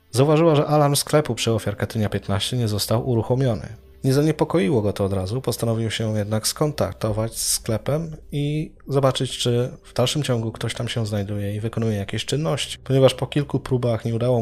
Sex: male